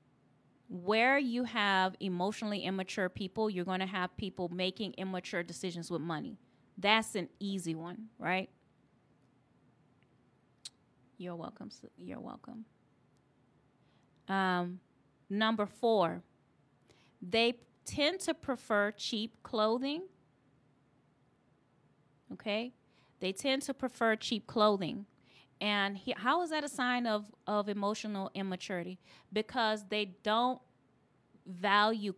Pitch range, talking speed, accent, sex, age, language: 180-225 Hz, 105 wpm, American, female, 20-39, English